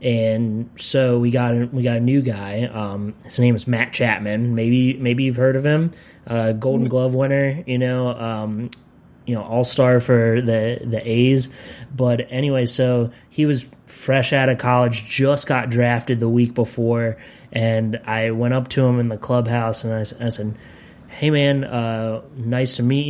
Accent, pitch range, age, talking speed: American, 115-130 Hz, 20-39, 185 wpm